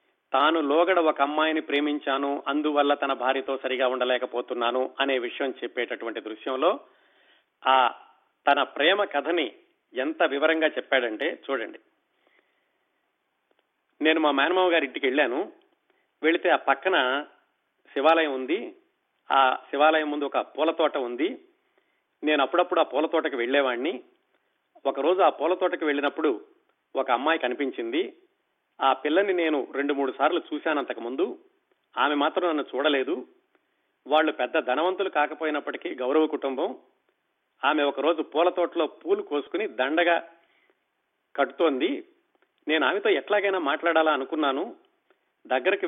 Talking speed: 105 wpm